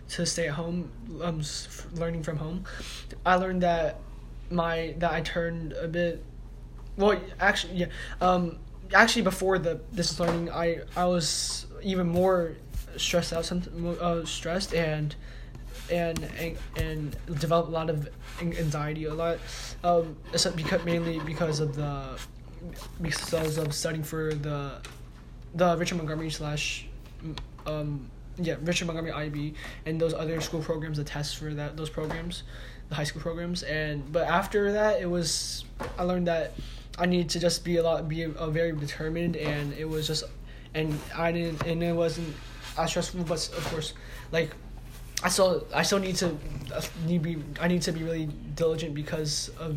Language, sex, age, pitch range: English, male, 20-39, 150-170 Hz